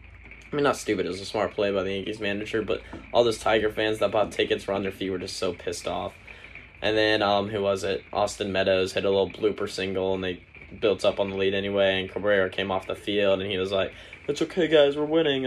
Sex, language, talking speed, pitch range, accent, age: male, English, 255 wpm, 95-110 Hz, American, 10-29